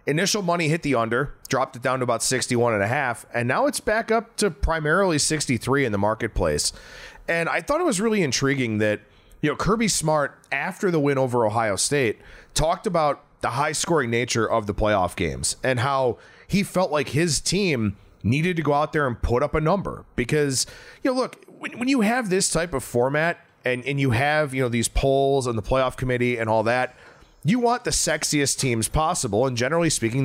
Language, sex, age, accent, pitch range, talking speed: English, male, 30-49, American, 120-170 Hz, 205 wpm